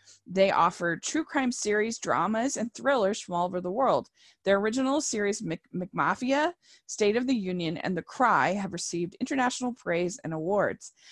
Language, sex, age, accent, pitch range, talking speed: English, female, 20-39, American, 180-235 Hz, 160 wpm